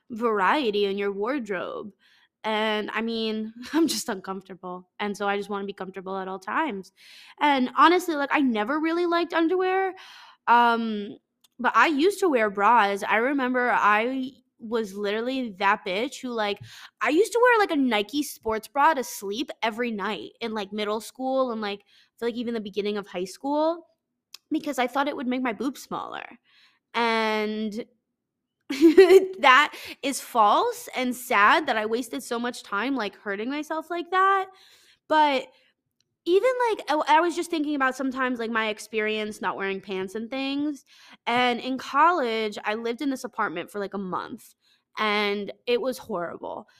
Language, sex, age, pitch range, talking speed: English, female, 20-39, 210-295 Hz, 170 wpm